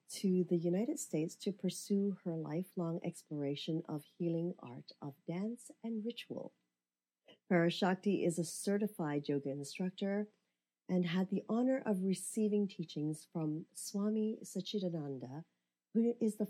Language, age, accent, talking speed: English, 40-59, American, 125 wpm